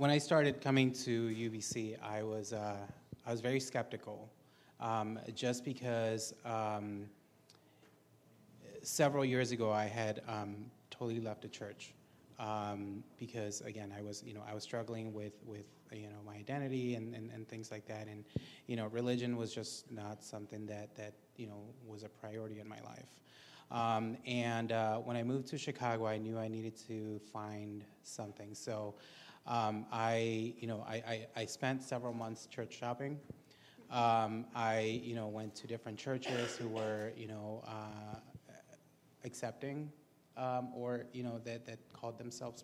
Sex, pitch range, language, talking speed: male, 110-125 Hz, English, 165 wpm